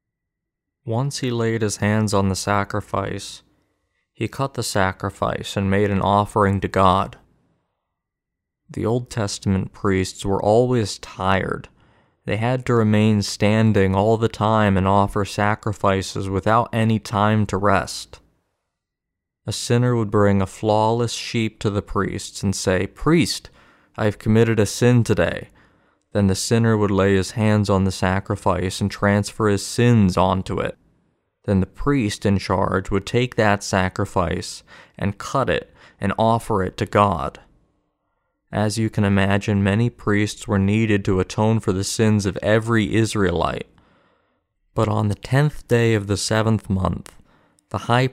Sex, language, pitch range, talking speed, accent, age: male, English, 95-110 Hz, 150 wpm, American, 20-39